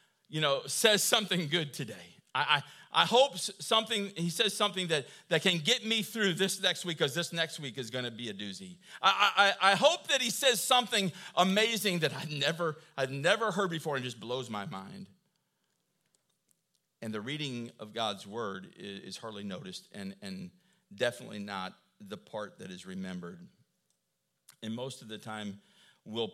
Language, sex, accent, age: English, male, American, 50-69